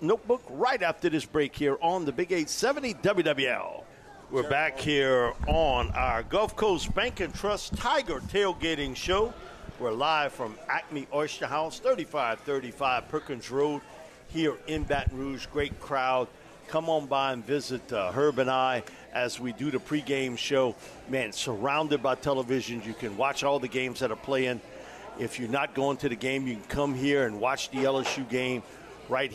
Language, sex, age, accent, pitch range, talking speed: English, male, 50-69, American, 125-145 Hz, 170 wpm